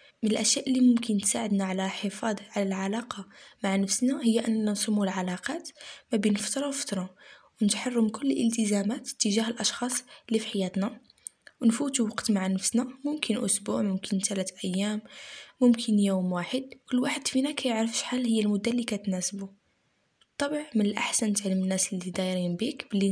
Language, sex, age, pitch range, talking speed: Arabic, female, 20-39, 195-245 Hz, 150 wpm